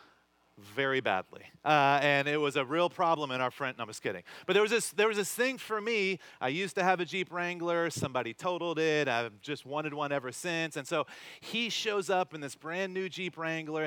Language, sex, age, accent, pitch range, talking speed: English, male, 30-49, American, 145-185 Hz, 230 wpm